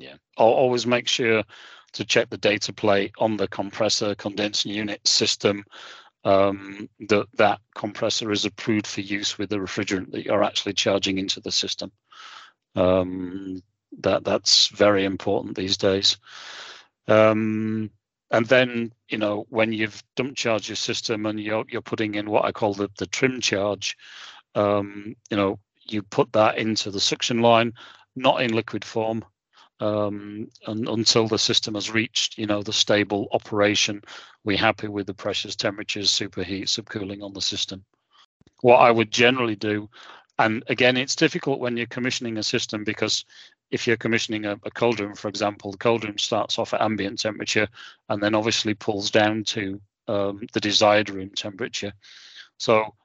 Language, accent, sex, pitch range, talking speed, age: English, British, male, 100-115 Hz, 165 wpm, 40-59